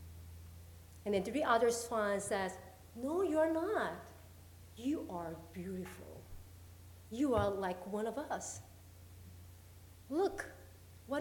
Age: 40-59